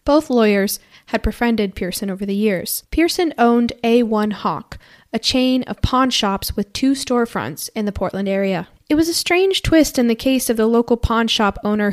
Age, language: 10-29, English